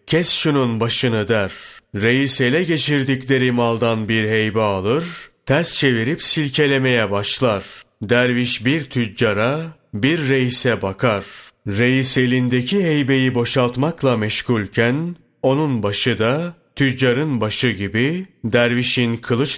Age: 30-49